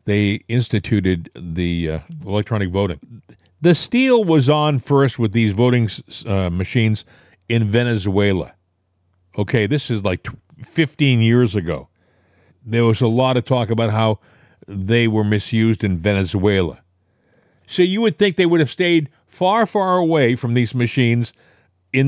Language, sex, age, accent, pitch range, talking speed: English, male, 50-69, American, 105-155 Hz, 150 wpm